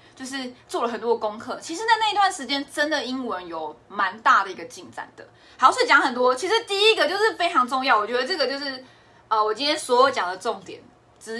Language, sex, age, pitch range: Chinese, female, 20-39, 215-310 Hz